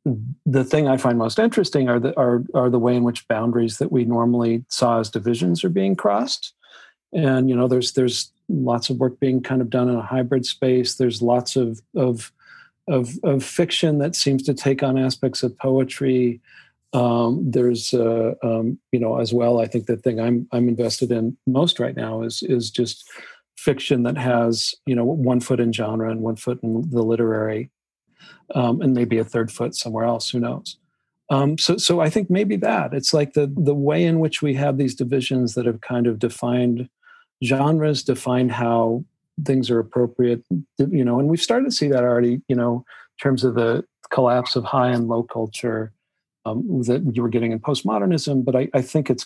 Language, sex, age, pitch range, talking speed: English, male, 40-59, 120-140 Hz, 200 wpm